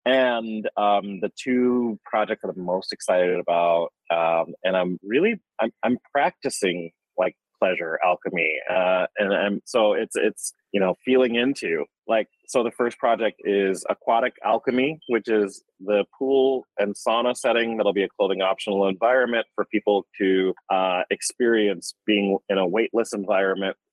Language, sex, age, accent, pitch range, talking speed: English, male, 30-49, American, 90-110 Hz, 155 wpm